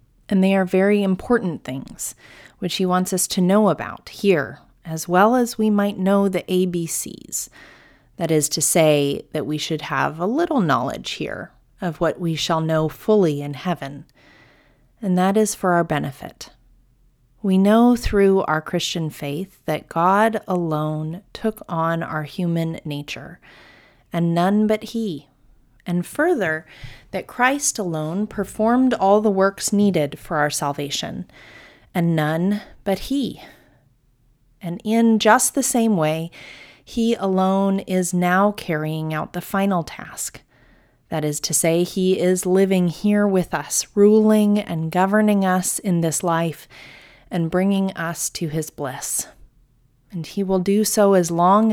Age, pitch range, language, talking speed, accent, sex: 30-49, 155-200 Hz, English, 150 wpm, American, female